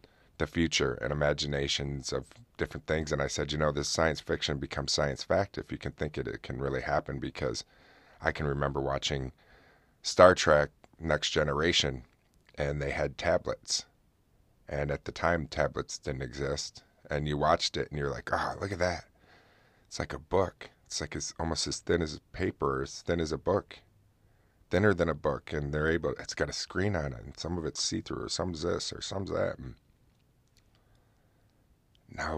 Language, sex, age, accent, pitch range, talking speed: English, male, 30-49, American, 70-90 Hz, 185 wpm